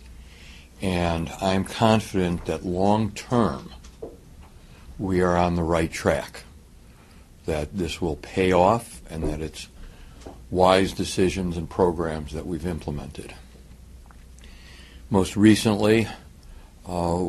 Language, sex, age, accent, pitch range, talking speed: English, male, 60-79, American, 75-95 Hz, 100 wpm